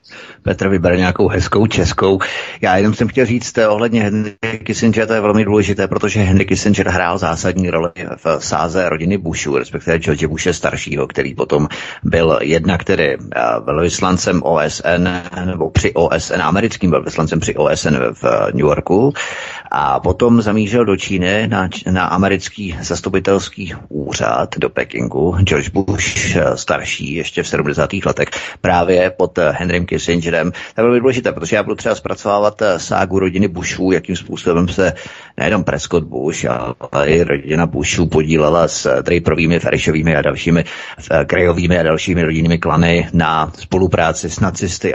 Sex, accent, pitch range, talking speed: male, native, 85-100 Hz, 145 wpm